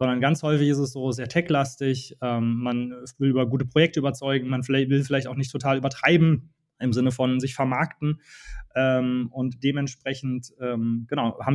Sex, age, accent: male, 20-39, German